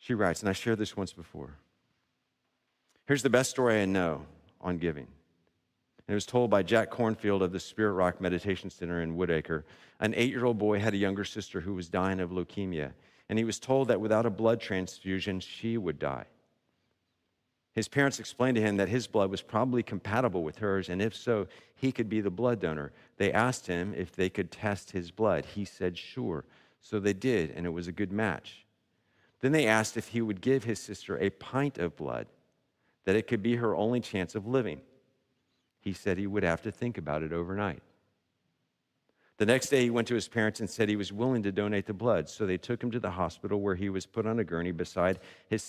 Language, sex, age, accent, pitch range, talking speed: English, male, 50-69, American, 90-115 Hz, 215 wpm